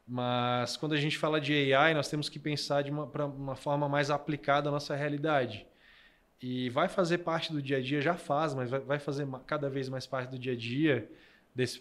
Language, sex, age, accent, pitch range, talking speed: Portuguese, male, 20-39, Brazilian, 130-150 Hz, 215 wpm